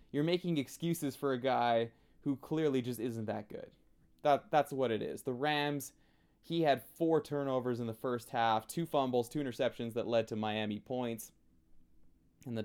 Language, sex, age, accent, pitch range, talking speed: English, male, 20-39, American, 110-160 Hz, 180 wpm